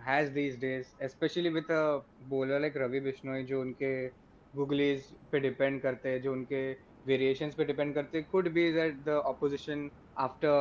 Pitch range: 135-150 Hz